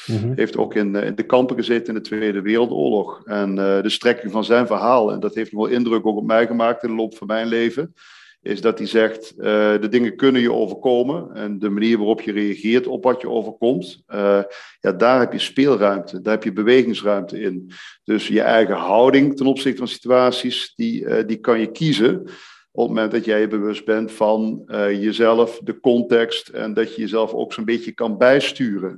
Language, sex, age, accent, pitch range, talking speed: Dutch, male, 40-59, Dutch, 110-125 Hz, 210 wpm